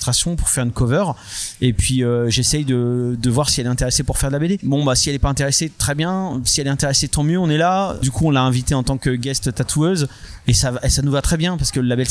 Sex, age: male, 30-49